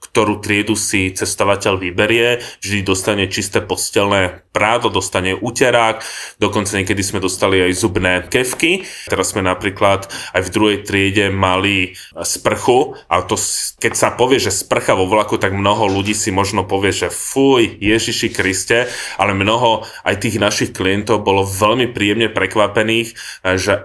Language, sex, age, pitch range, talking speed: Slovak, male, 20-39, 95-115 Hz, 145 wpm